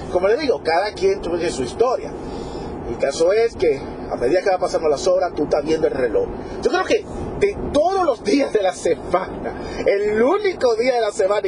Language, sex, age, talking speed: Spanish, male, 40-59, 210 wpm